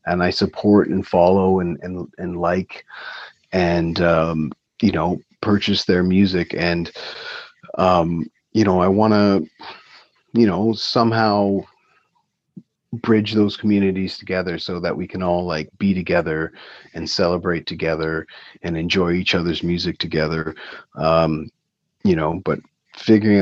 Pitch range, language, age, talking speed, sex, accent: 85-105 Hz, English, 30-49, 135 wpm, male, American